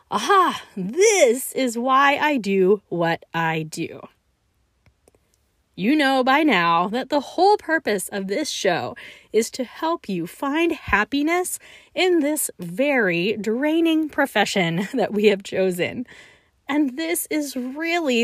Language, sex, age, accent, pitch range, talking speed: English, female, 30-49, American, 205-305 Hz, 130 wpm